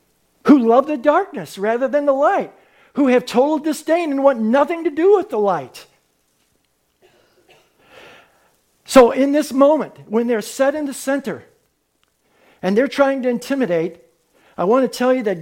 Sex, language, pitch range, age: male, English, 215-290 Hz, 60-79